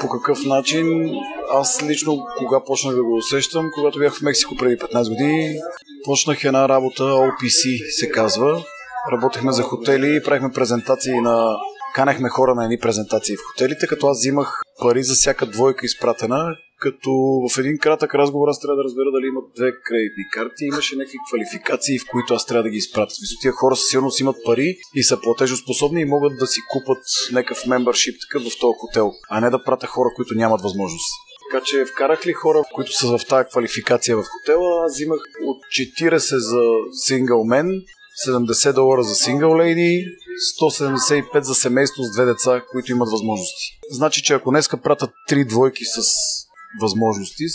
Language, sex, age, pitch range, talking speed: Bulgarian, male, 30-49, 125-145 Hz, 175 wpm